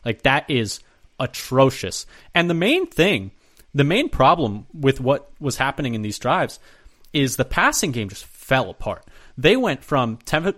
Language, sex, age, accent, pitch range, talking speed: English, male, 30-49, American, 120-155 Hz, 165 wpm